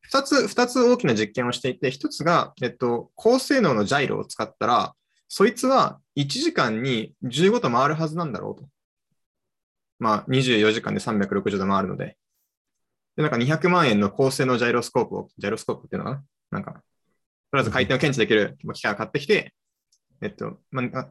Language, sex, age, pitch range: Japanese, male, 20-39, 125-195 Hz